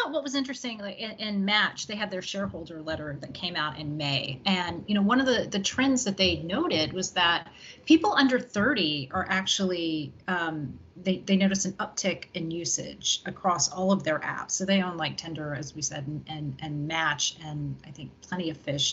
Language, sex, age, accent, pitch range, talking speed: English, female, 30-49, American, 160-210 Hz, 205 wpm